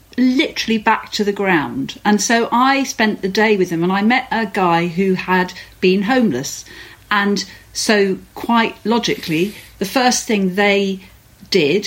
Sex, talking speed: female, 155 wpm